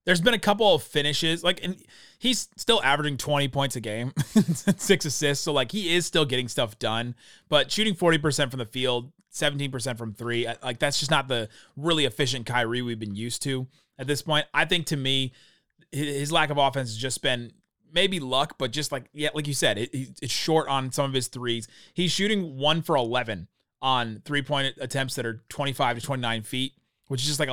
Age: 30-49